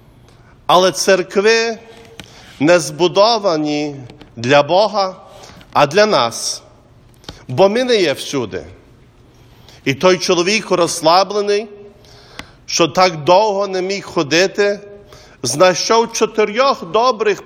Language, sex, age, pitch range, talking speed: English, male, 50-69, 160-220 Hz, 95 wpm